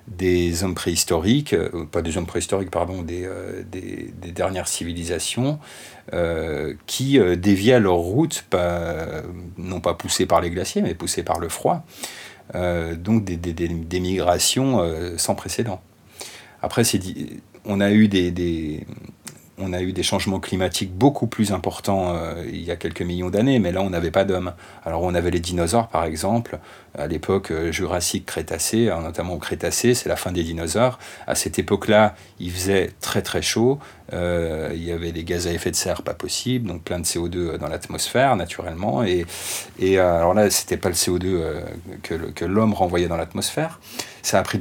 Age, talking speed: 40-59, 180 wpm